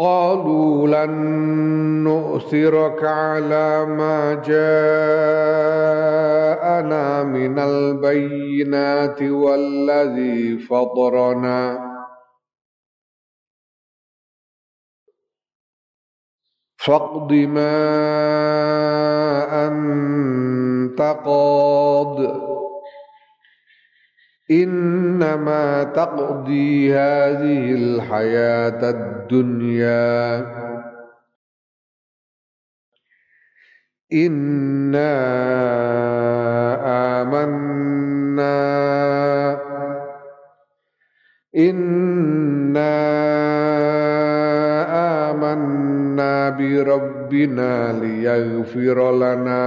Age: 50-69